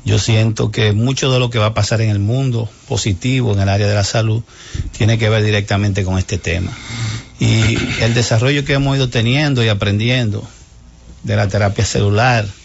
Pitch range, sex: 105-125 Hz, male